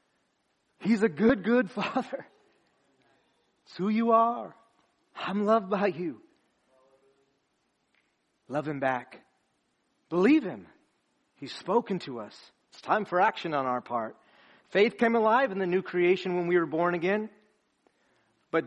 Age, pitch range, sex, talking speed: 40-59, 180-240 Hz, male, 135 wpm